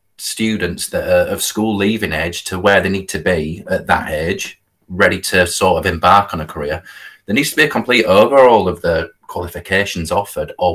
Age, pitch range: 30-49, 90-105 Hz